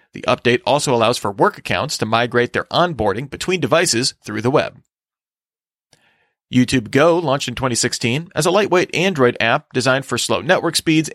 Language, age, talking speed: English, 40-59, 165 wpm